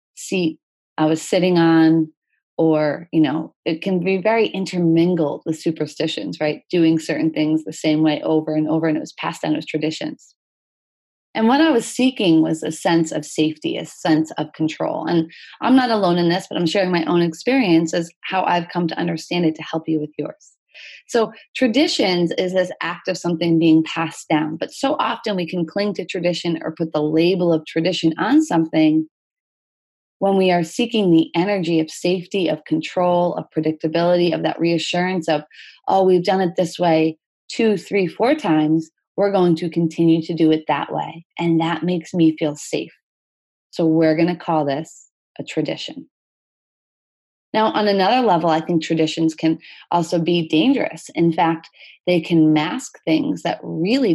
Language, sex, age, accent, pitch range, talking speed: English, female, 30-49, American, 160-185 Hz, 180 wpm